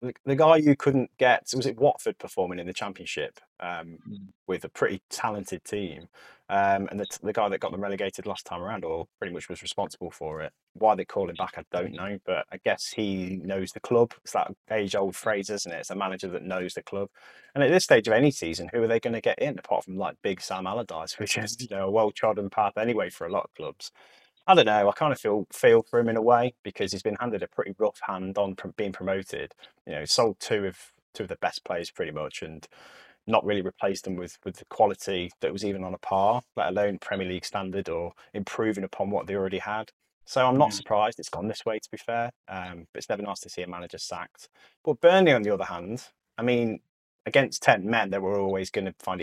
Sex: male